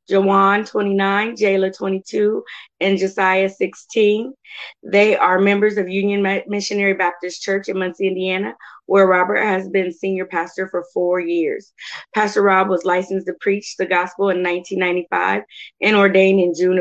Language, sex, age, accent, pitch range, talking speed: English, female, 20-39, American, 180-200 Hz, 145 wpm